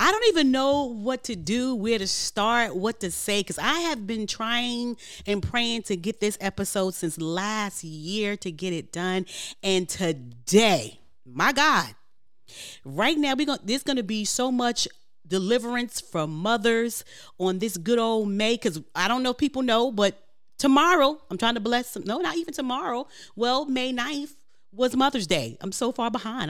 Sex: female